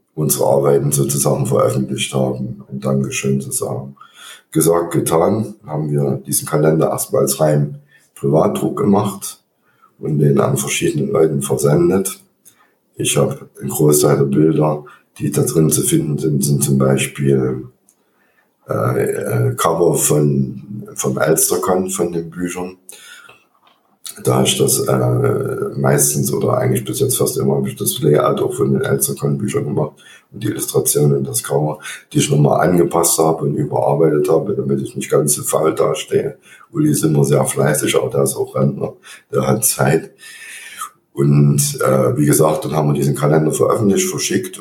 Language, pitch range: German, 70-80 Hz